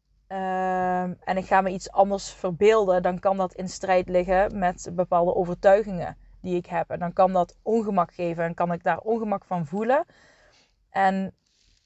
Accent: Dutch